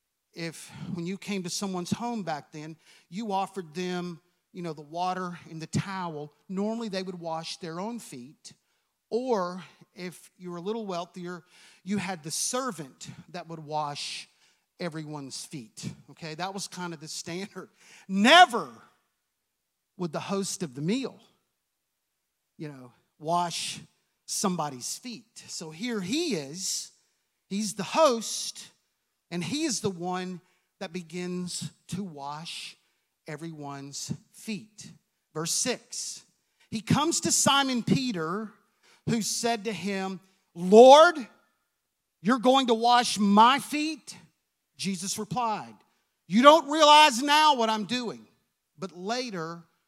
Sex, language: male, English